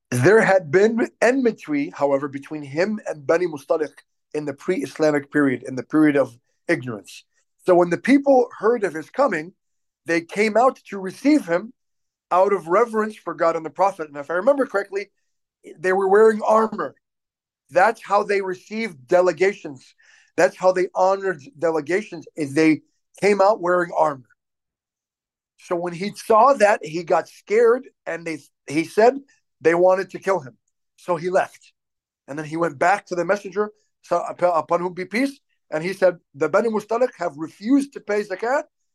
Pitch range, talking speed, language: 165-215 Hz, 170 wpm, English